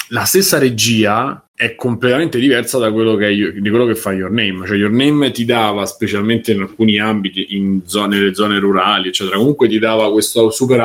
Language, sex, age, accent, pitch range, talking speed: Italian, male, 20-39, native, 105-125 Hz, 195 wpm